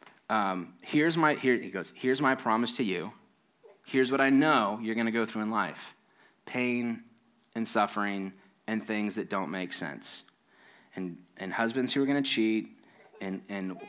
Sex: male